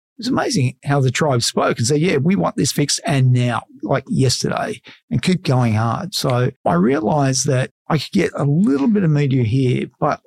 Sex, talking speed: male, 210 wpm